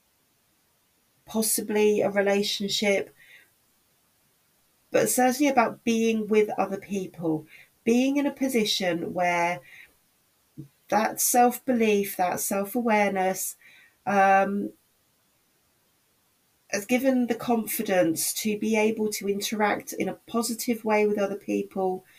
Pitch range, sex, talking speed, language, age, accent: 180-220 Hz, female, 95 wpm, English, 30-49, British